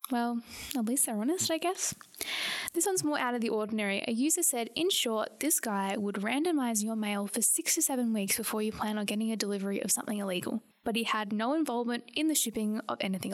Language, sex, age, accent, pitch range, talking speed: English, female, 10-29, Australian, 220-275 Hz, 225 wpm